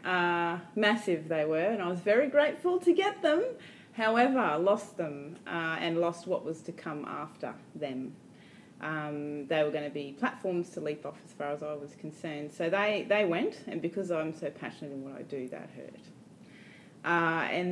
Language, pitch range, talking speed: English, 150-205 Hz, 195 wpm